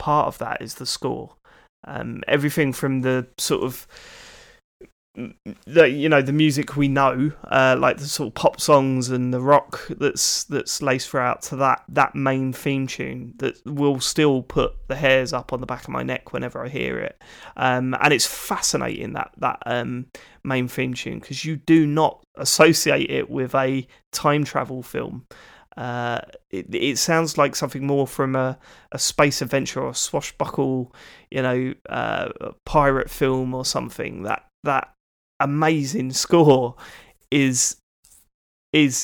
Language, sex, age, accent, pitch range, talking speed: English, male, 20-39, British, 130-145 Hz, 165 wpm